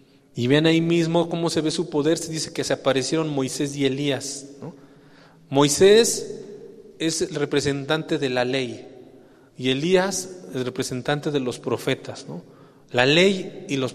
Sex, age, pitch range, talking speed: male, 40-59, 135-165 Hz, 155 wpm